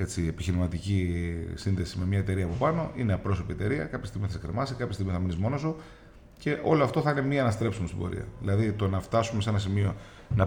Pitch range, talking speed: 95-120 Hz, 220 wpm